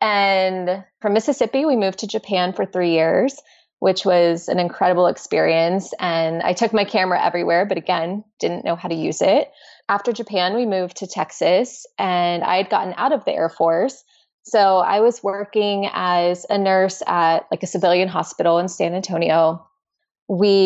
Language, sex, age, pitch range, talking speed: English, female, 20-39, 175-225 Hz, 175 wpm